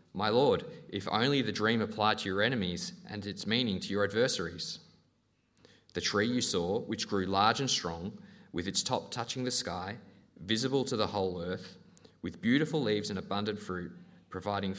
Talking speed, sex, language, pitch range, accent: 175 wpm, male, English, 90-120 Hz, Australian